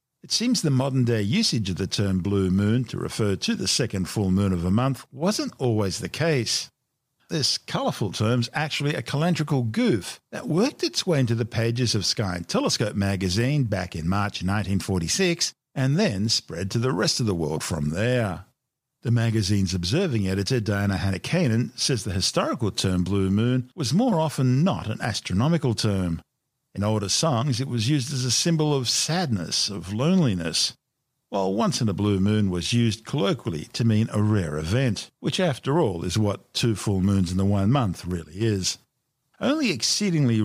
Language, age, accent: English, 50-69, Australian